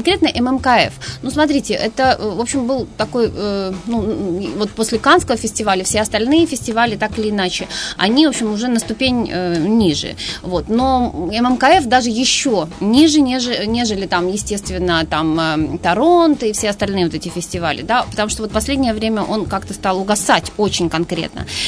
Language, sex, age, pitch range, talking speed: Russian, female, 20-39, 185-245 Hz, 165 wpm